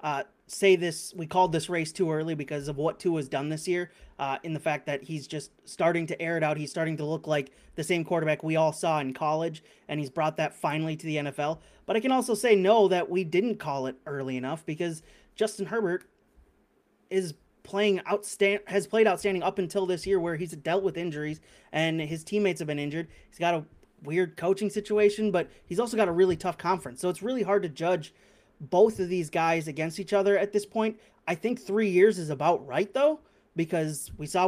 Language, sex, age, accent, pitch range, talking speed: English, male, 30-49, American, 155-190 Hz, 225 wpm